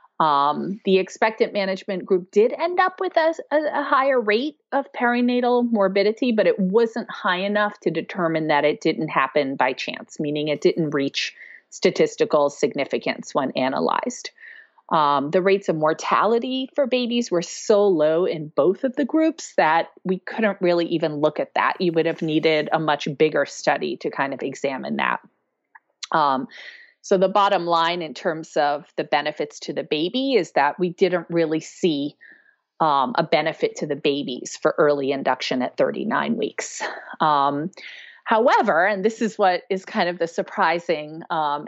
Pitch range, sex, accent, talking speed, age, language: 160-240 Hz, female, American, 165 wpm, 30-49, English